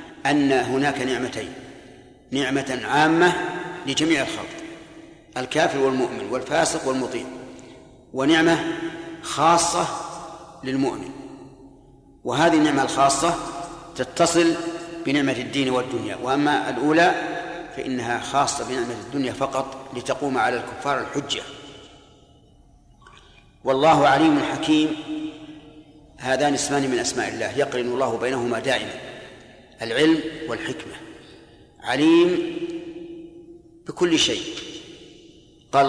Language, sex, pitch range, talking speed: Arabic, male, 130-155 Hz, 85 wpm